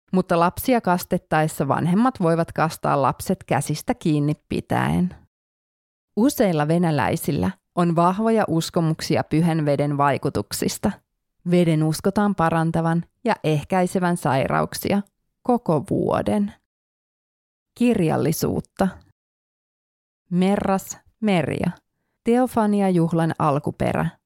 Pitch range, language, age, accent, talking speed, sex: 155-195 Hz, Finnish, 20-39, native, 80 wpm, female